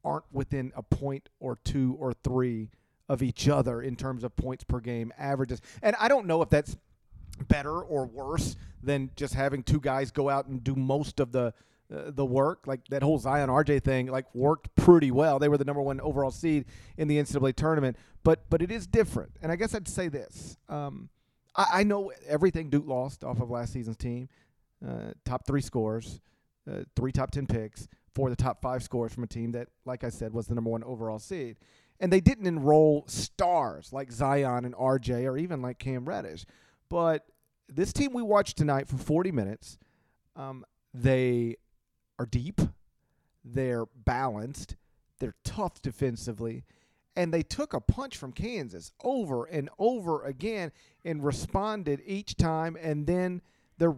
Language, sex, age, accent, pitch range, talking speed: English, male, 40-59, American, 125-155 Hz, 180 wpm